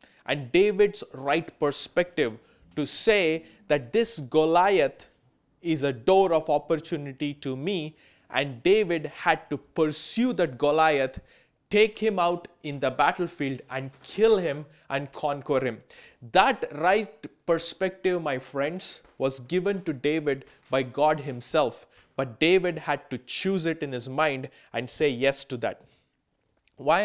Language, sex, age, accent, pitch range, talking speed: English, male, 20-39, Indian, 140-185 Hz, 140 wpm